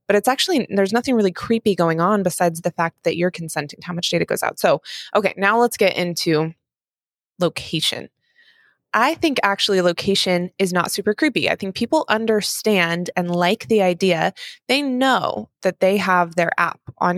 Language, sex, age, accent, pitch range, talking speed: English, female, 20-39, American, 175-210 Hz, 180 wpm